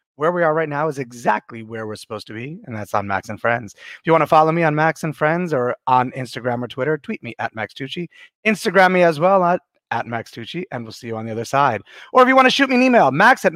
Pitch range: 140-205 Hz